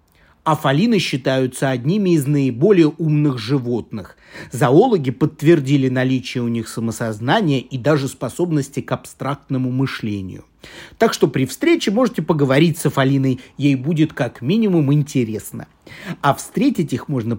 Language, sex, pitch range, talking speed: Russian, male, 130-170 Hz, 125 wpm